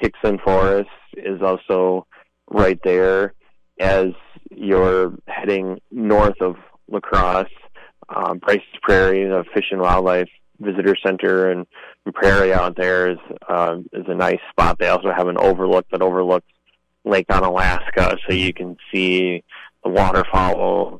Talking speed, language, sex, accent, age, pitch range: 135 wpm, English, male, American, 20-39, 90-95 Hz